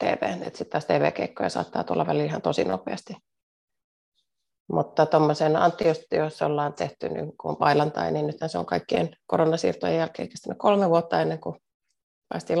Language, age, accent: Finnish, 30-49, native